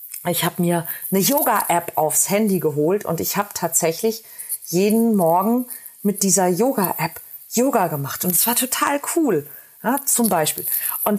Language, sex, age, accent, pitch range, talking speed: German, female, 40-59, German, 180-235 Hz, 150 wpm